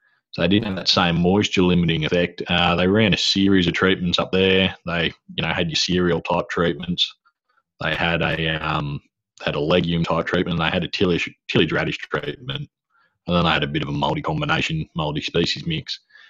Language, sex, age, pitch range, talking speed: English, male, 30-49, 85-100 Hz, 190 wpm